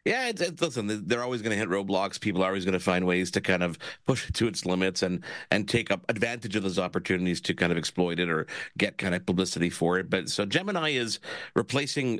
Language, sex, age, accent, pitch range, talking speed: English, male, 50-69, American, 90-115 Hz, 245 wpm